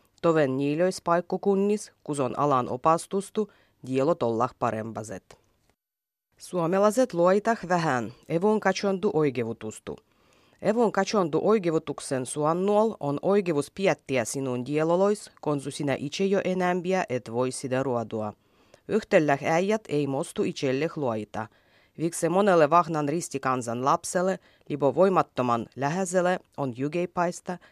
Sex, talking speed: female, 110 wpm